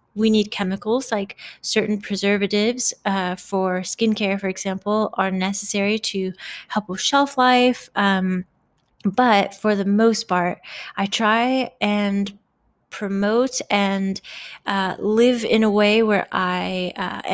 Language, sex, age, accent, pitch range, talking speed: English, female, 20-39, American, 195-230 Hz, 130 wpm